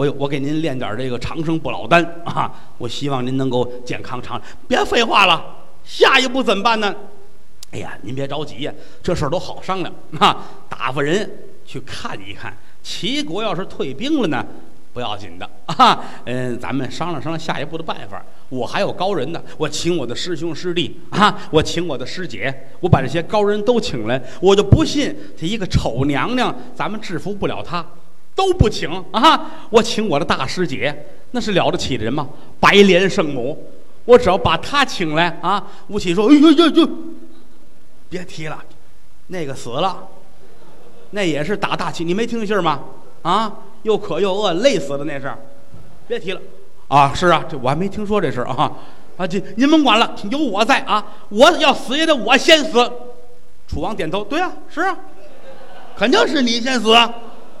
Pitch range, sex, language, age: 150-235 Hz, male, English, 50-69